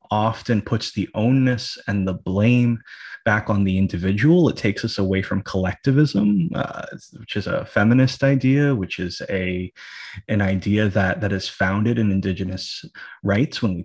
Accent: American